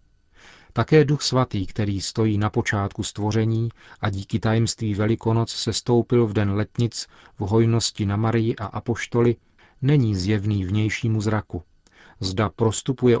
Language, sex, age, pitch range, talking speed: Czech, male, 40-59, 100-120 Hz, 130 wpm